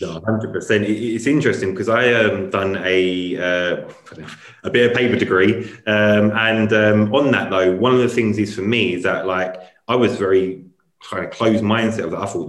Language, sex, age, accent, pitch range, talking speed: English, male, 20-39, British, 95-125 Hz, 210 wpm